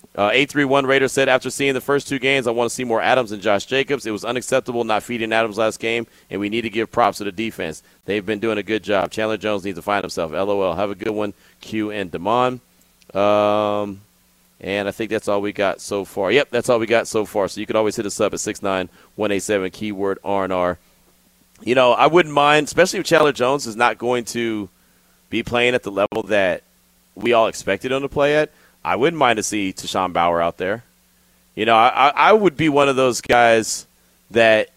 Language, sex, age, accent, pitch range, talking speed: English, male, 30-49, American, 100-130 Hz, 230 wpm